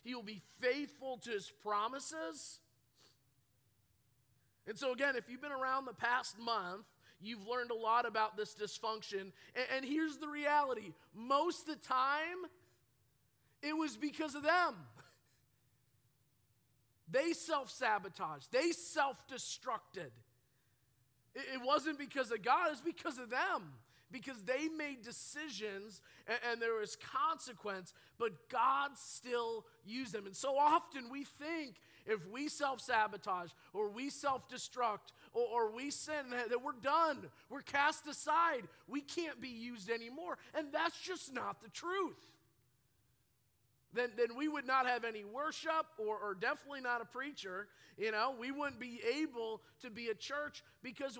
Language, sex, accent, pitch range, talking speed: English, male, American, 195-280 Hz, 145 wpm